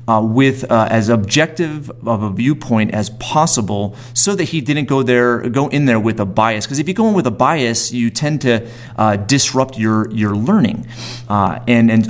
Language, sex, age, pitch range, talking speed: English, male, 30-49, 110-130 Hz, 205 wpm